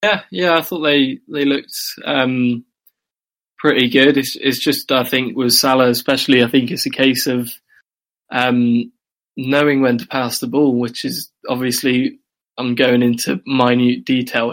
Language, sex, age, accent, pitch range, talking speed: English, male, 20-39, British, 125-135 Hz, 160 wpm